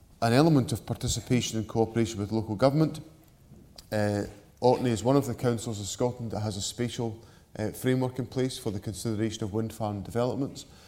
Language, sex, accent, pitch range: English, male, British, 105-125 Hz